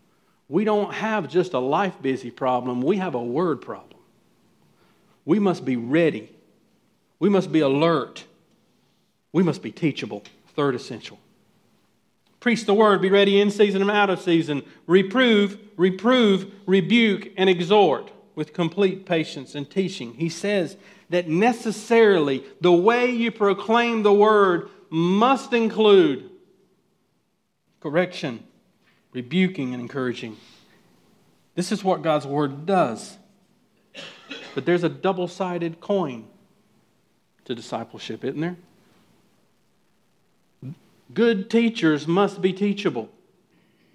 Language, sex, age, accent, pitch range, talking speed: English, male, 50-69, American, 165-210 Hz, 115 wpm